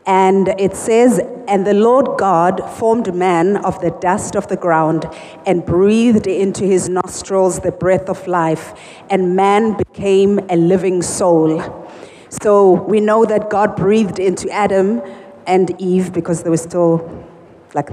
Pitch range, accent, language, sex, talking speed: 180-220 Hz, South African, English, female, 150 wpm